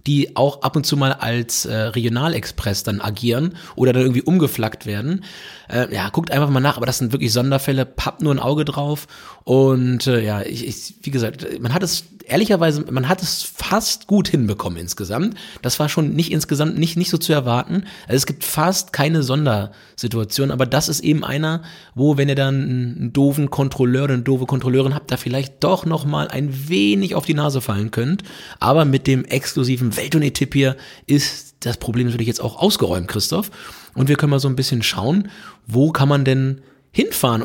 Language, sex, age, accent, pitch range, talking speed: German, male, 30-49, German, 120-155 Hz, 195 wpm